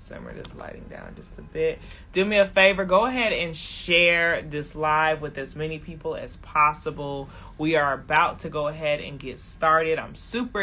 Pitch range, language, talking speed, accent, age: 140-170 Hz, English, 190 wpm, American, 20-39